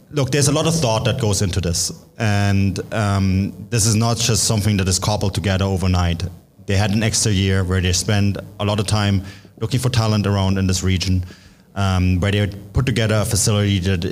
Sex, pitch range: male, 95-115 Hz